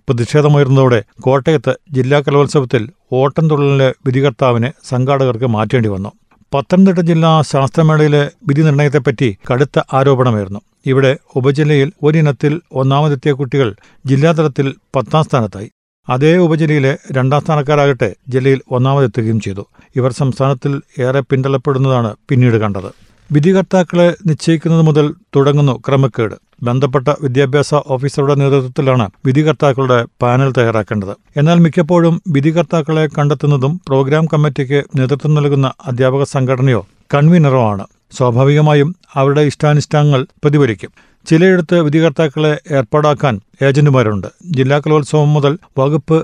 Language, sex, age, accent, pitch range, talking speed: Malayalam, male, 50-69, native, 130-150 Hz, 95 wpm